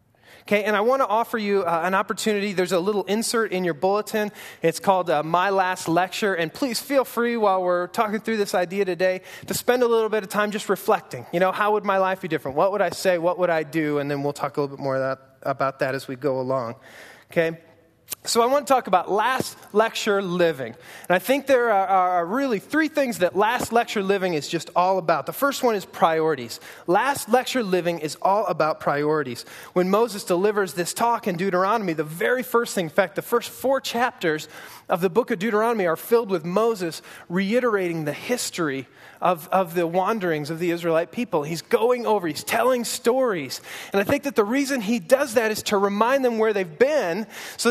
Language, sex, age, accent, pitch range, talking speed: English, male, 20-39, American, 175-235 Hz, 220 wpm